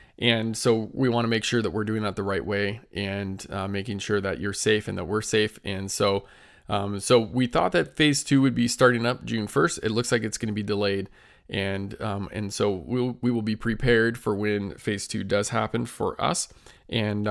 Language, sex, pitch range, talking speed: English, male, 100-120 Hz, 230 wpm